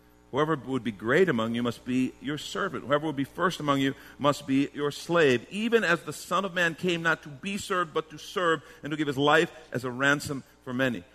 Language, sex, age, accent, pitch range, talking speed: English, male, 50-69, American, 130-195 Hz, 235 wpm